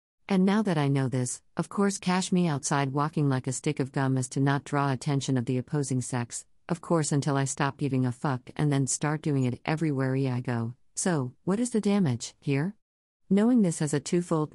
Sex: female